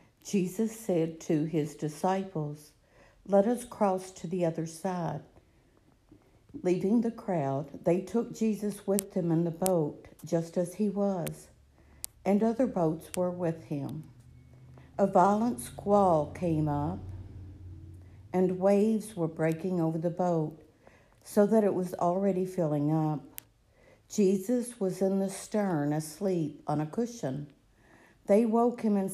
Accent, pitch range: American, 150-195 Hz